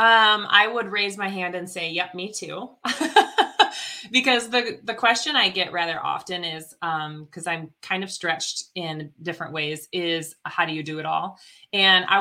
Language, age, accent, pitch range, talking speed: English, 20-39, American, 165-200 Hz, 185 wpm